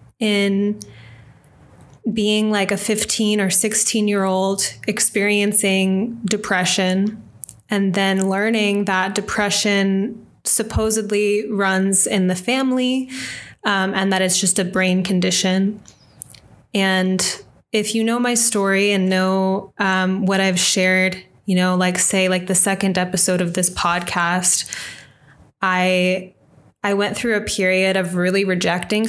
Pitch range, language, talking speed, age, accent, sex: 175-205 Hz, English, 125 wpm, 20-39, American, female